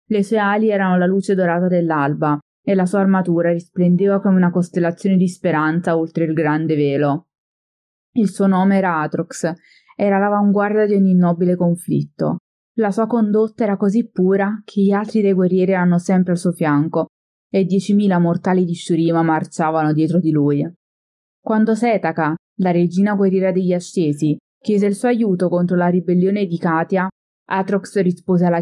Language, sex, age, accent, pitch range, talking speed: Italian, female, 20-39, native, 160-190 Hz, 160 wpm